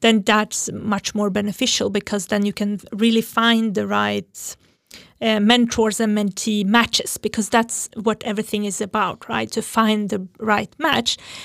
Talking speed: 155 wpm